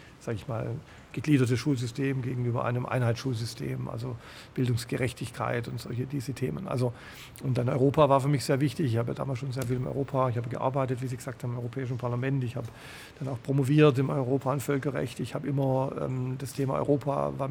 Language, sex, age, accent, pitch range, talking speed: German, male, 50-69, German, 125-140 Hz, 200 wpm